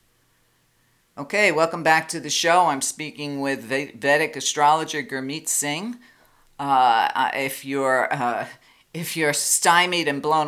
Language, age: English, 50-69